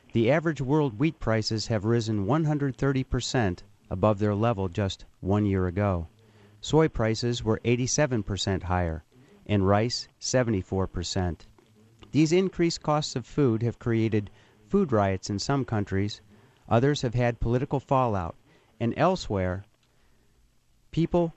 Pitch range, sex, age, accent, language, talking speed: 105-135 Hz, male, 50-69, American, English, 120 wpm